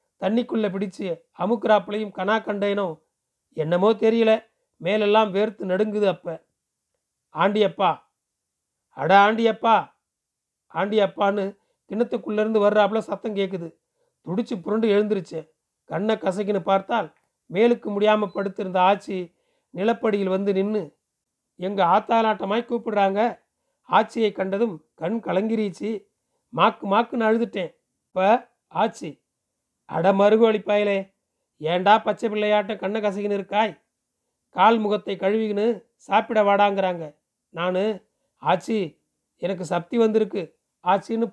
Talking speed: 90 wpm